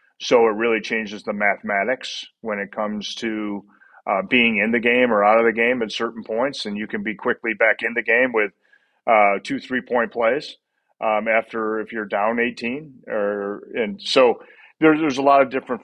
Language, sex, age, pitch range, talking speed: English, male, 40-59, 100-115 Hz, 200 wpm